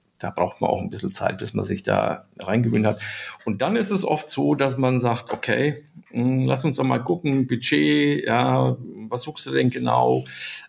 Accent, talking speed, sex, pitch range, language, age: German, 195 wpm, male, 100-135 Hz, German, 50-69